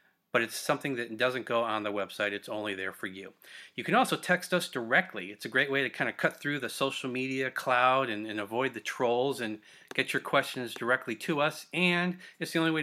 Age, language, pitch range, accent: 30-49, English, 110-145 Hz, American